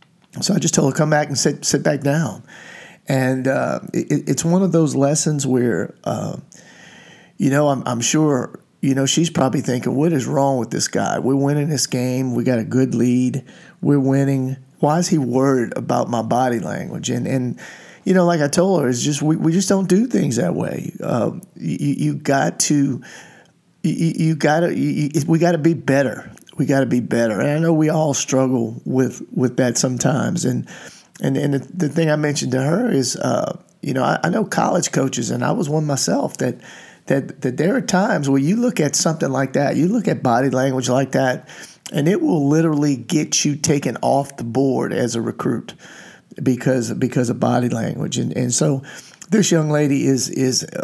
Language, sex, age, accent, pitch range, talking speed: English, male, 50-69, American, 130-160 Hz, 210 wpm